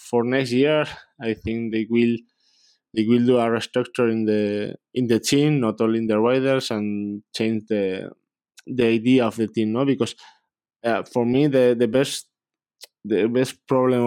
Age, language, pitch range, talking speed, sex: 20-39, English, 110-125 Hz, 175 wpm, male